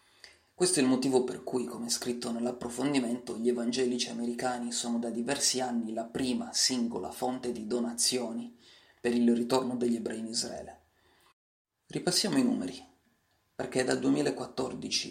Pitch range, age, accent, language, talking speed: 120-130 Hz, 30-49, native, Italian, 140 wpm